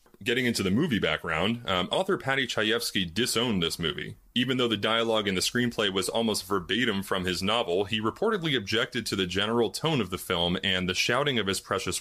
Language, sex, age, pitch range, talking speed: English, male, 30-49, 90-120 Hz, 205 wpm